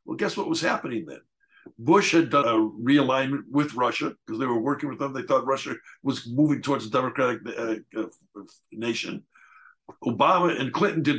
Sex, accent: male, American